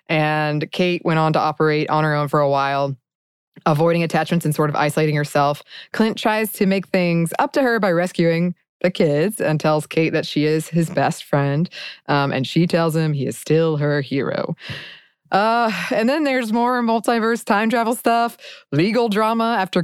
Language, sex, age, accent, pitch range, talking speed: English, female, 20-39, American, 155-205 Hz, 190 wpm